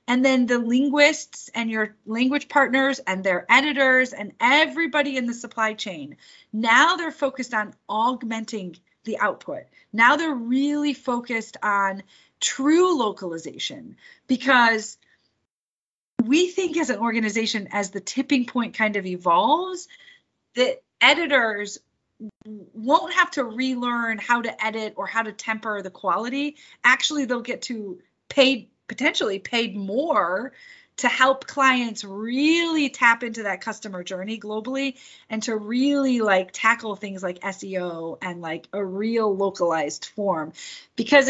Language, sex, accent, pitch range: English, female, American, 210-275 Hz